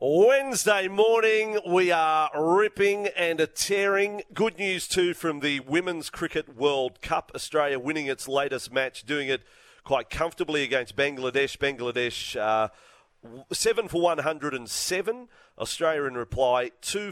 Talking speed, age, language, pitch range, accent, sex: 125 wpm, 40-59, English, 115-180 Hz, Australian, male